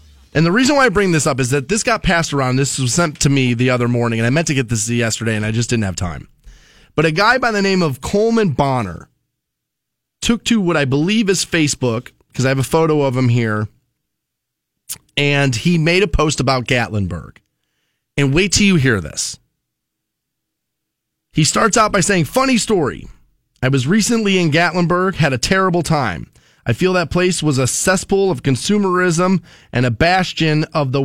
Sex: male